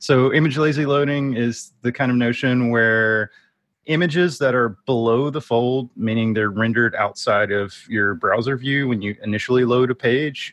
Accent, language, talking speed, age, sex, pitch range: American, English, 165 wpm, 30-49, male, 110-140 Hz